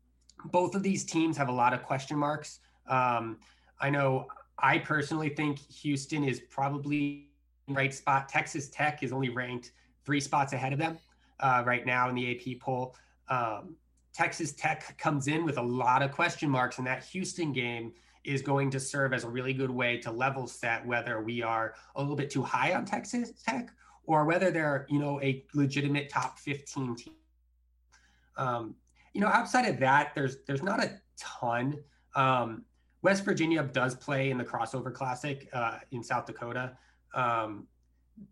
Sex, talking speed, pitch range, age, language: male, 175 wpm, 120-145 Hz, 20-39, English